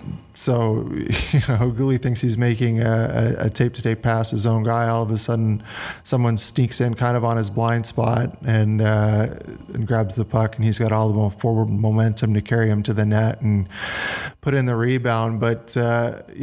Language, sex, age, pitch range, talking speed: English, male, 20-39, 110-125 Hz, 195 wpm